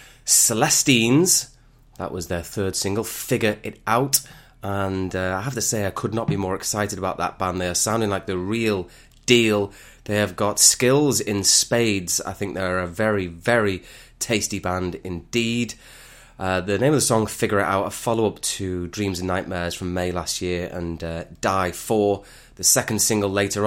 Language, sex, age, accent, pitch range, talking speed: English, male, 20-39, British, 95-120 Hz, 190 wpm